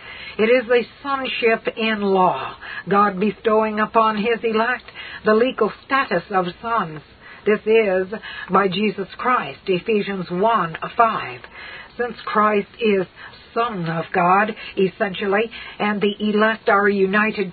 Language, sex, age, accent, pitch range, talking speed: English, female, 60-79, American, 190-225 Hz, 125 wpm